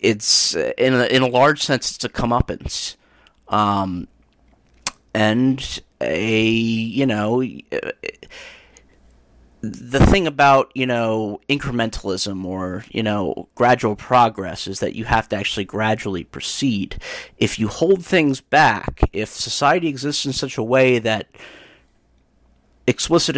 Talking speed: 125 wpm